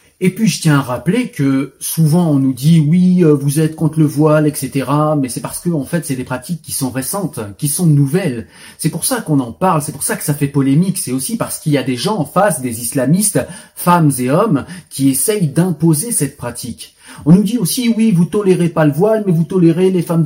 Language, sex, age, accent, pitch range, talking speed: French, male, 40-59, French, 140-185 Hz, 250 wpm